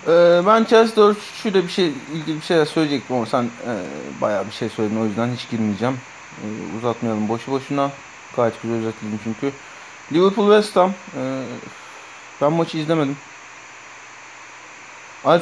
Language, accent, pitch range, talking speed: Turkish, native, 120-140 Hz, 145 wpm